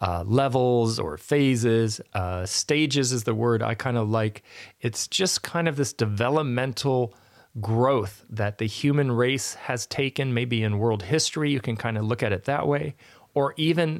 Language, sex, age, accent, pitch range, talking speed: English, male, 40-59, American, 110-145 Hz, 175 wpm